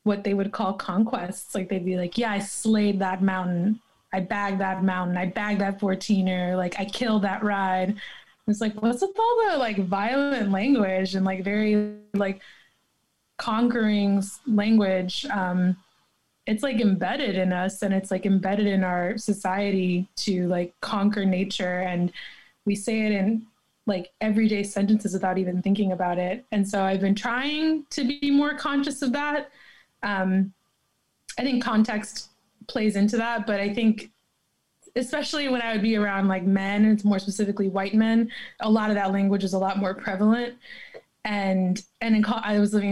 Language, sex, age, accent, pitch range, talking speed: English, female, 20-39, American, 190-220 Hz, 170 wpm